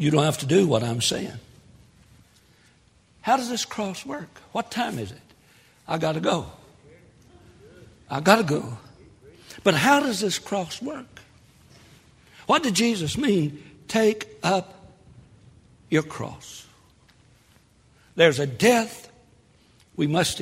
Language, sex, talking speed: English, male, 130 wpm